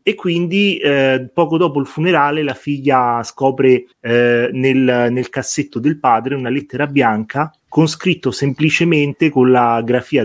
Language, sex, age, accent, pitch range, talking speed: Italian, male, 30-49, native, 130-160 Hz, 145 wpm